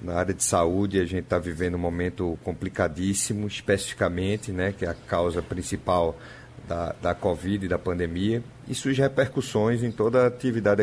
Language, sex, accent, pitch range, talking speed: Portuguese, male, Brazilian, 95-120 Hz, 170 wpm